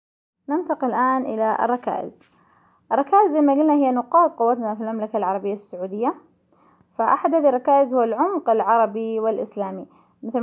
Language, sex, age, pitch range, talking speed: Arabic, female, 10-29, 215-255 Hz, 130 wpm